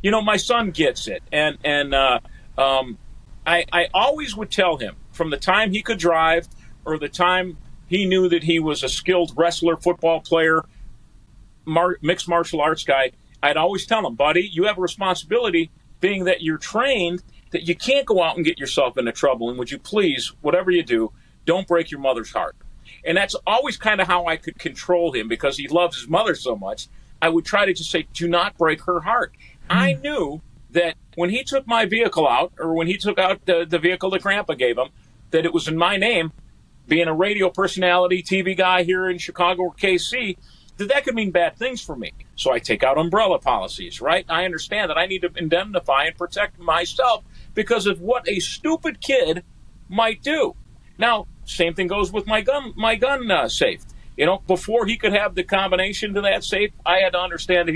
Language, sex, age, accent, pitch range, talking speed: English, male, 40-59, American, 160-205 Hz, 210 wpm